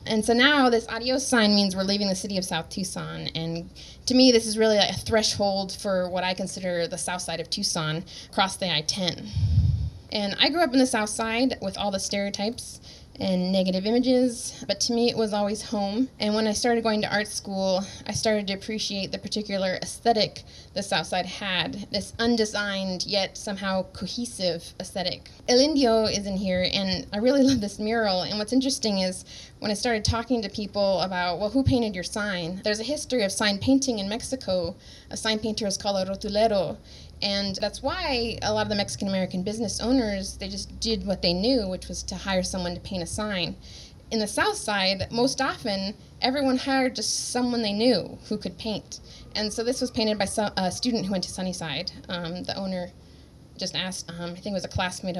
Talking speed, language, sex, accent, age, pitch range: 200 wpm, English, female, American, 20-39, 185-225 Hz